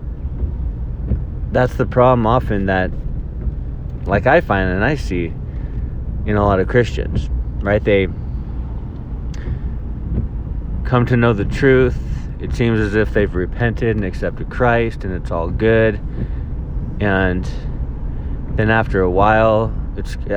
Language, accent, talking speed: English, American, 125 wpm